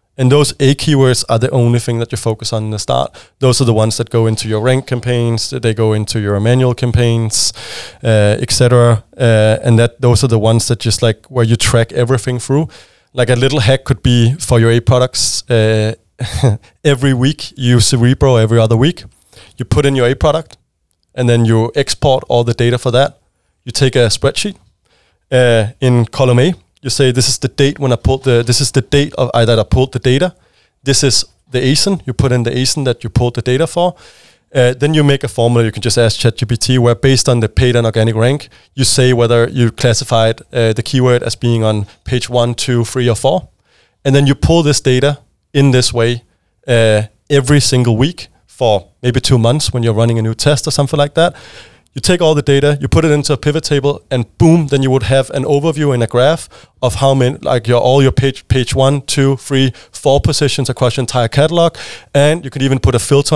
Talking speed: 225 wpm